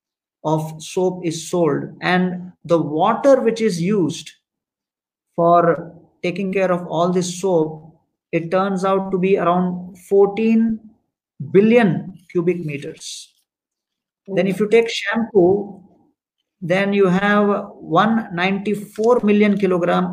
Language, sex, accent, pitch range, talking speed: Hindi, male, native, 170-200 Hz, 115 wpm